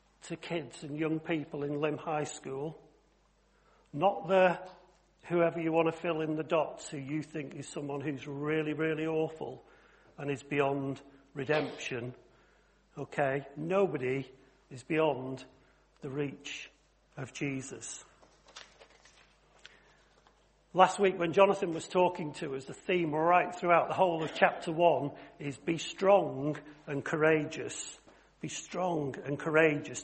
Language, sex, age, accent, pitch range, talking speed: English, male, 50-69, British, 145-180 Hz, 130 wpm